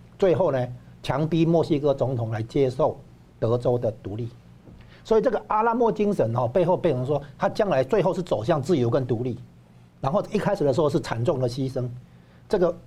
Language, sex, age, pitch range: Chinese, male, 60-79, 115-160 Hz